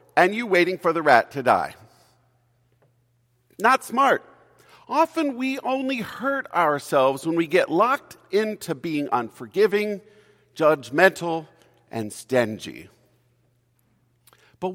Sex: male